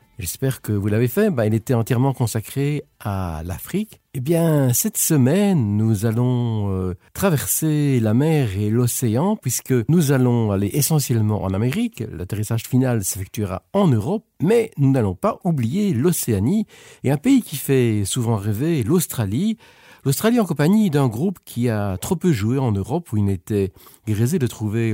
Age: 50-69